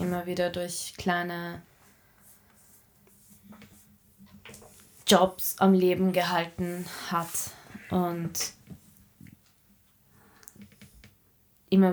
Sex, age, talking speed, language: female, 20-39, 55 wpm, German